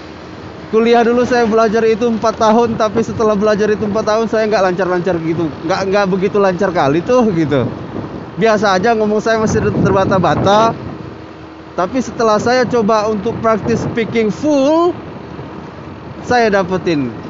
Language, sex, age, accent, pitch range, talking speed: English, male, 20-39, Indonesian, 180-225 Hz, 135 wpm